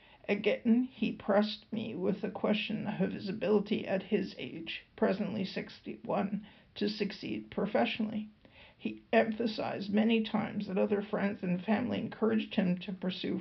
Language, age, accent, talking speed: English, 50-69, American, 140 wpm